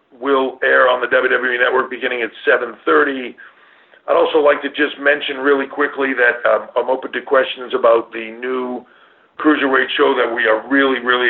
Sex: male